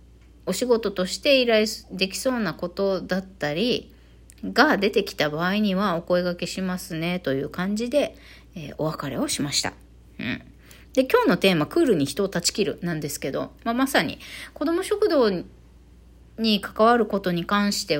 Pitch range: 150-230 Hz